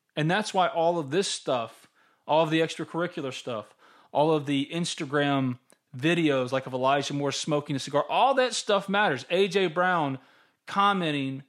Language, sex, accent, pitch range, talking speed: English, male, American, 135-170 Hz, 160 wpm